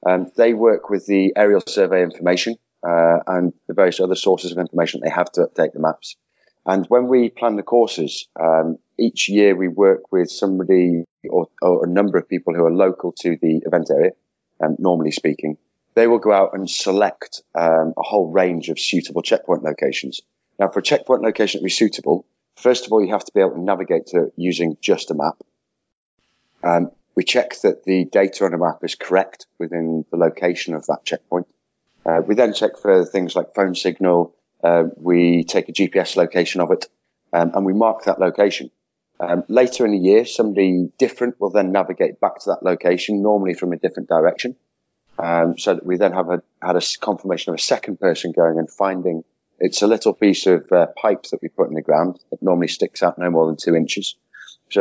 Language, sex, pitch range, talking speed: English, male, 85-100 Hz, 205 wpm